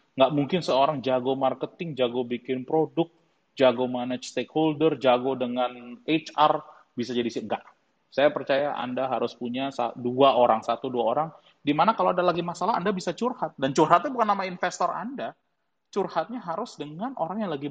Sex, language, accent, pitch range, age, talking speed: male, Indonesian, native, 125-165 Hz, 30-49, 165 wpm